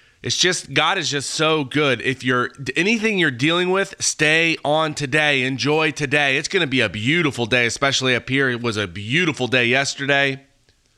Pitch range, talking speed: 125-160 Hz, 185 wpm